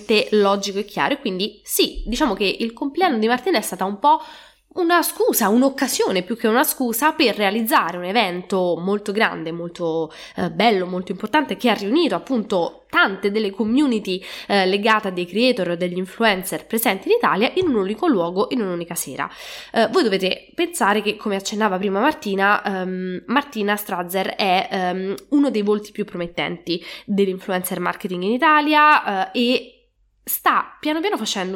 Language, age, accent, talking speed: English, 10-29, Italian, 165 wpm